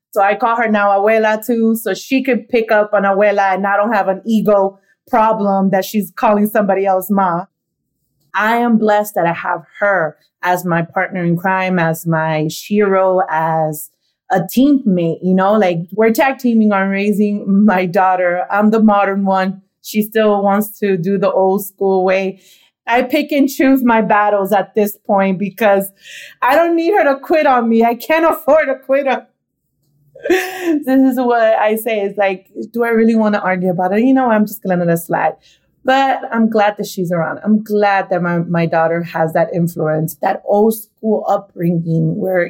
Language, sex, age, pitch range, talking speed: English, female, 30-49, 185-245 Hz, 195 wpm